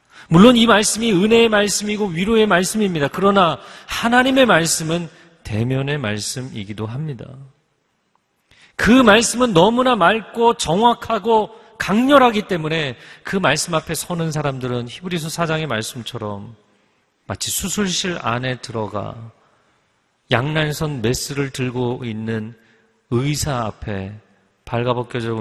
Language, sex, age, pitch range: Korean, male, 40-59, 115-165 Hz